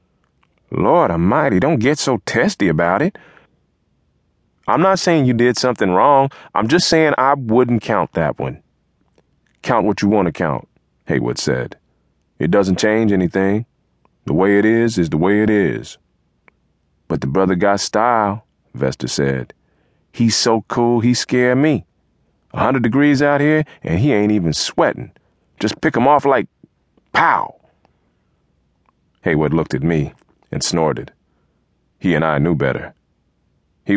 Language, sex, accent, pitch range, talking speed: English, male, American, 80-125 Hz, 150 wpm